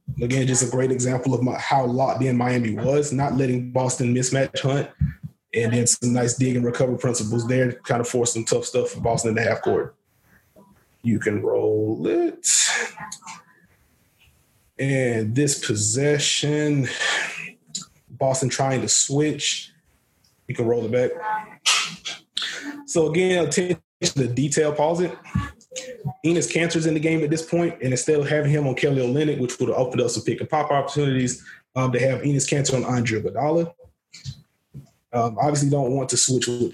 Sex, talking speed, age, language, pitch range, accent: male, 170 wpm, 20-39, English, 125-150 Hz, American